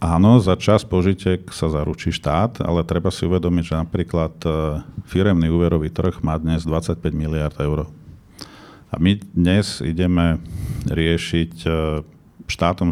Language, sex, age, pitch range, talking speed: Slovak, male, 50-69, 80-90 Hz, 125 wpm